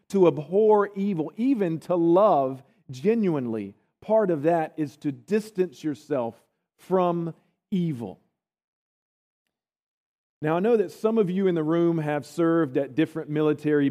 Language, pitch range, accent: English, 145-205 Hz, American